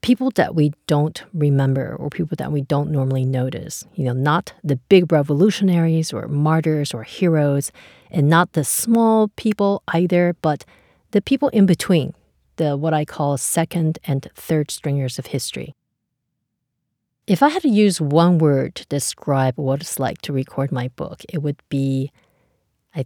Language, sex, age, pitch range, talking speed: English, female, 40-59, 135-175 Hz, 165 wpm